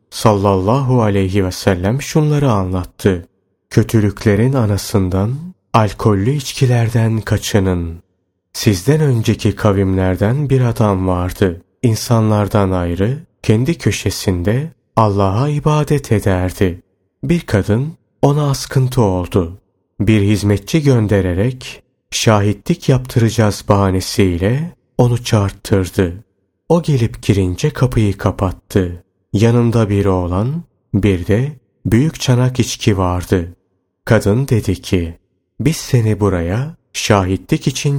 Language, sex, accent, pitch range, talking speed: Turkish, male, native, 95-125 Hz, 95 wpm